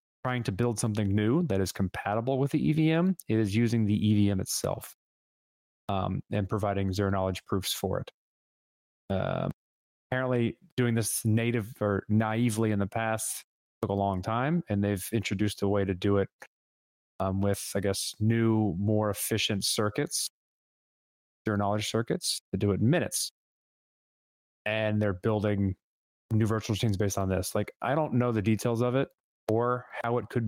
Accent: American